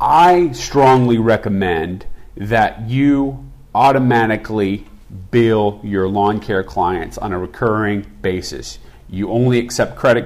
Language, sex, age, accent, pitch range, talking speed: English, male, 40-59, American, 95-120 Hz, 110 wpm